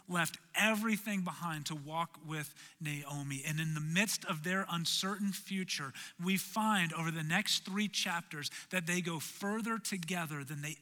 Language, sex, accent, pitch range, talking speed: English, male, American, 155-190 Hz, 160 wpm